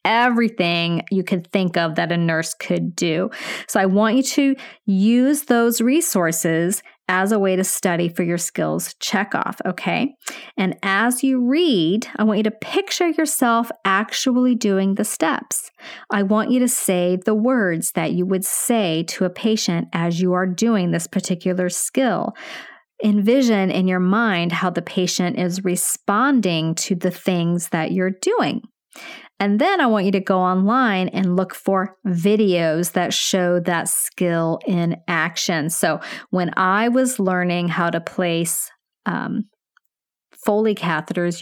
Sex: female